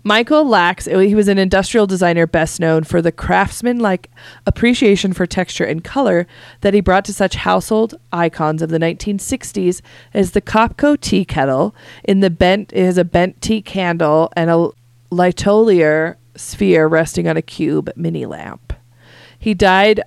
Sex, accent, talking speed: female, American, 160 wpm